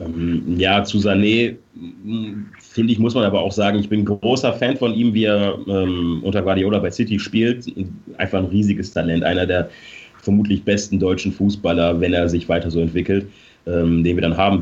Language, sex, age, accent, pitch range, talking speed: German, male, 30-49, German, 95-110 Hz, 180 wpm